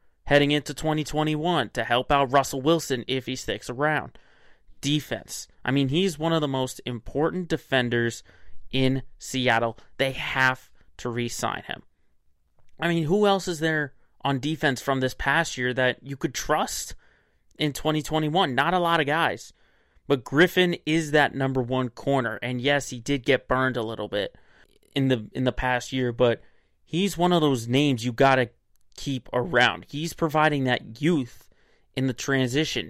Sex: male